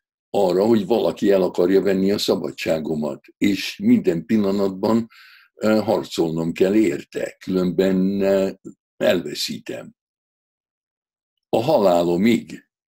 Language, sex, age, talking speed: Hungarian, male, 60-79, 85 wpm